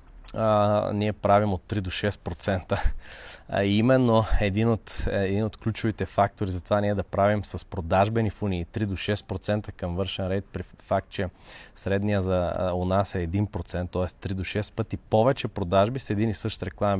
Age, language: 20-39, Bulgarian